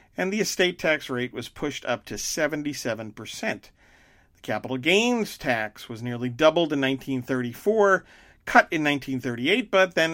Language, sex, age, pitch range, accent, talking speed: English, male, 50-69, 115-155 Hz, American, 140 wpm